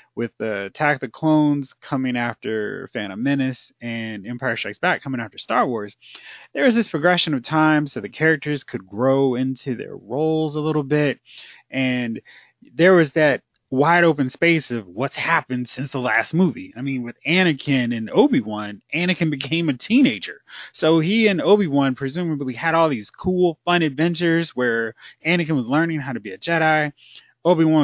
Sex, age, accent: male, 30-49, American